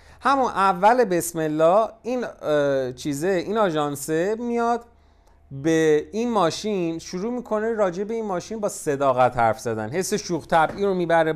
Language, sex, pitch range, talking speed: Persian, male, 145-215 Hz, 135 wpm